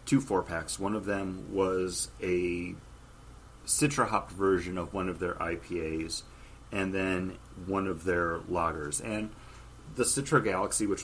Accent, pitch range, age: American, 90-125 Hz, 30-49